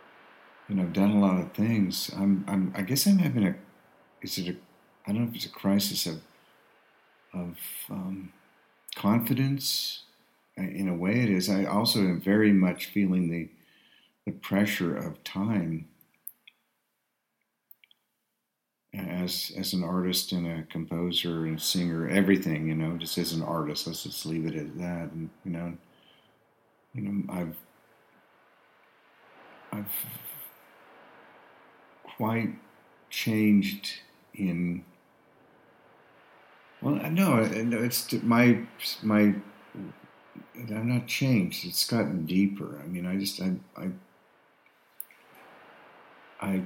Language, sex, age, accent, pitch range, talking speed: English, male, 50-69, American, 85-105 Hz, 120 wpm